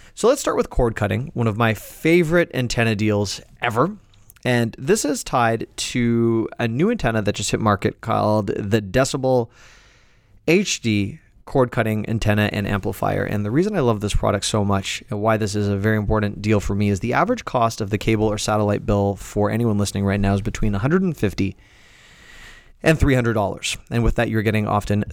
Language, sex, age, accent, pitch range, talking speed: English, male, 30-49, American, 105-125 Hz, 190 wpm